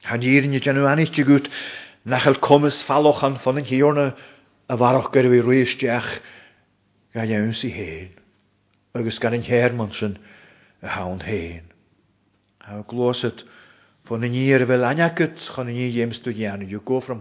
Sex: male